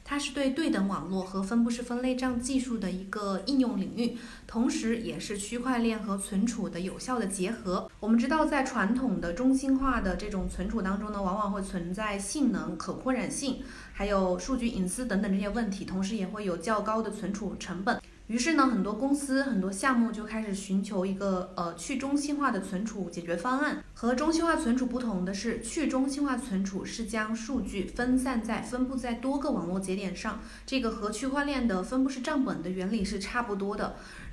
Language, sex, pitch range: Chinese, female, 195-255 Hz